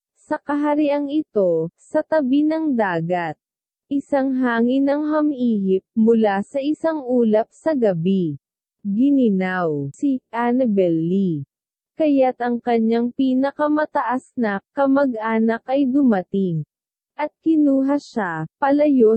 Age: 20-39